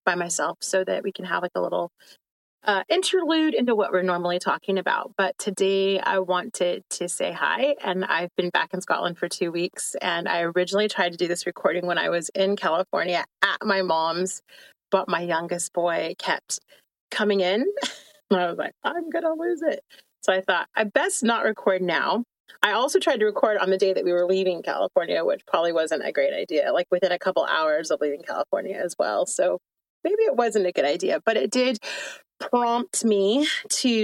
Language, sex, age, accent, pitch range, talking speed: English, female, 30-49, American, 180-225 Hz, 205 wpm